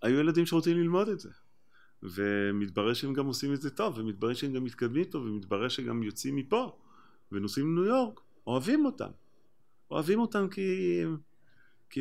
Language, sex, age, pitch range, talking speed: Hebrew, male, 30-49, 95-125 Hz, 160 wpm